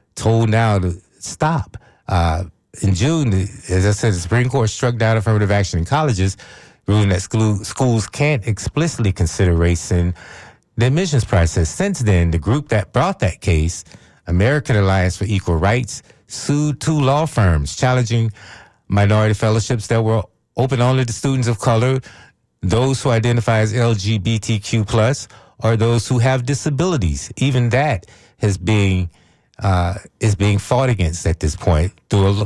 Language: English